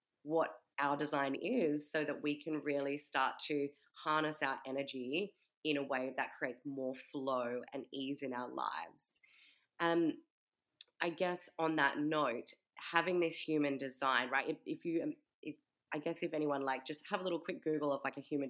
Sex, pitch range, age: female, 140-170 Hz, 20-39